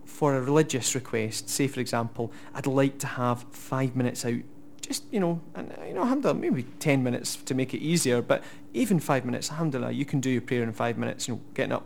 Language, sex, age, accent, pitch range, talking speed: English, male, 30-49, British, 130-165 Hz, 230 wpm